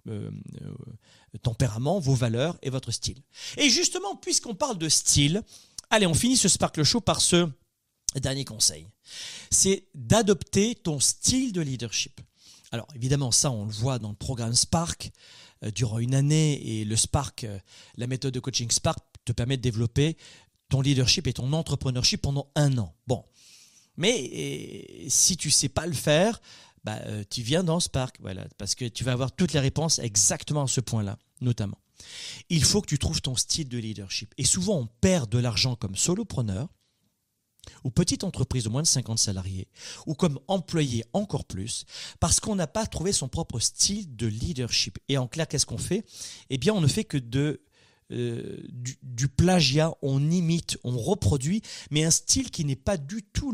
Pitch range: 120-165 Hz